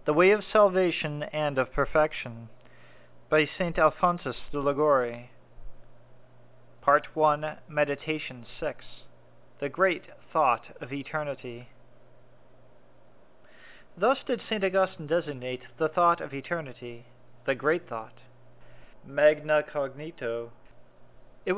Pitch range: 125-185 Hz